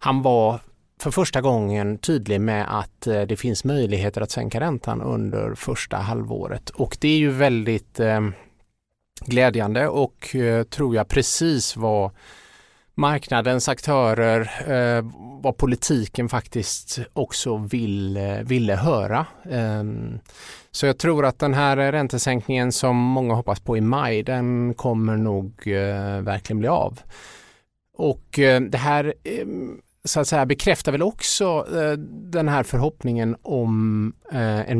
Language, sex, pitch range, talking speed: Swedish, male, 115-140 Hz, 120 wpm